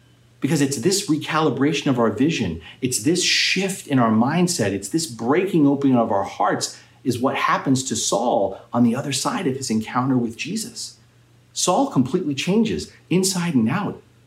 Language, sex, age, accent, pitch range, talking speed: English, male, 40-59, American, 115-170 Hz, 170 wpm